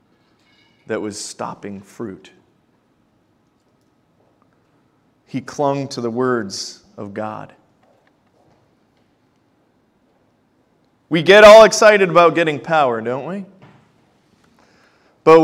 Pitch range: 150-215 Hz